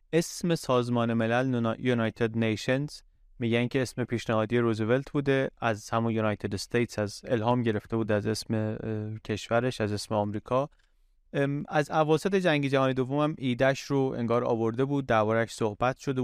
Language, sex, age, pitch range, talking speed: Persian, male, 30-49, 115-140 Hz, 145 wpm